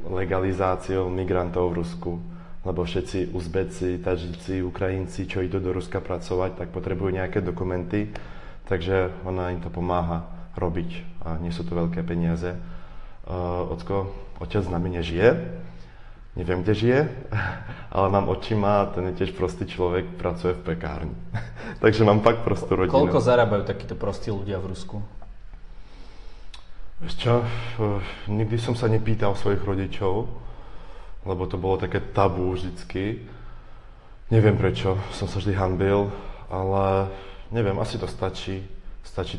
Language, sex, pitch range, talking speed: Slovak, male, 90-100 Hz, 135 wpm